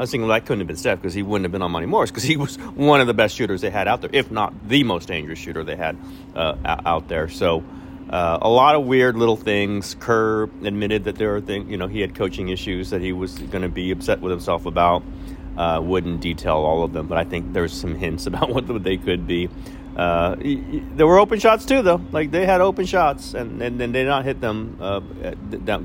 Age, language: 40-59, English